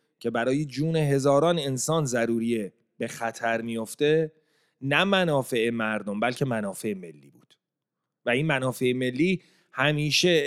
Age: 30-49